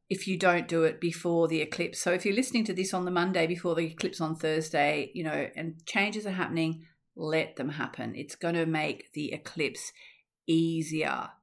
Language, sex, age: English, female, 40-59